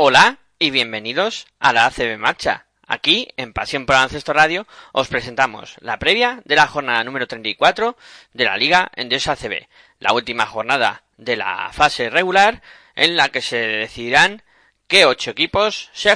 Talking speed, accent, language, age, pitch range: 165 wpm, Spanish, Spanish, 20-39, 130-170 Hz